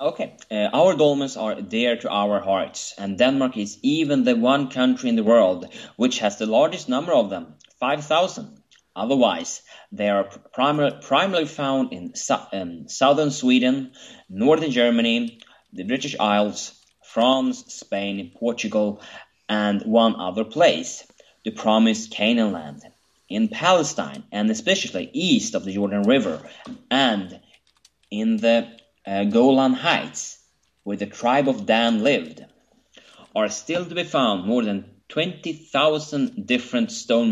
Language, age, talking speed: English, 30-49, 135 wpm